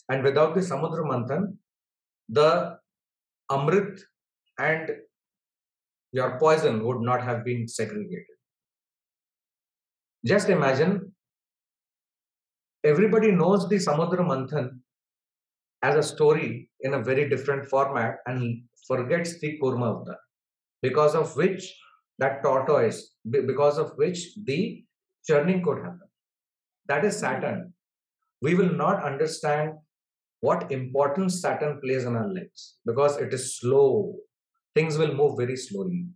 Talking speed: 120 wpm